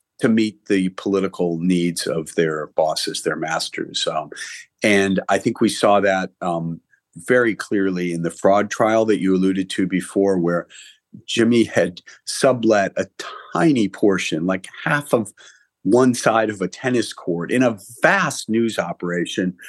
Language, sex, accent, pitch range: English, male, American, 95-130 Hz